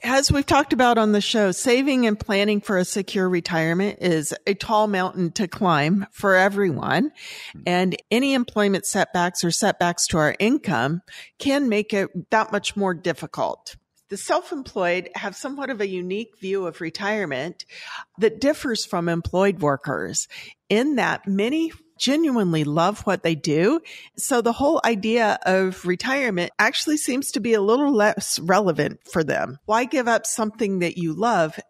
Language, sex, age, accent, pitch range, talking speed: English, female, 50-69, American, 175-235 Hz, 160 wpm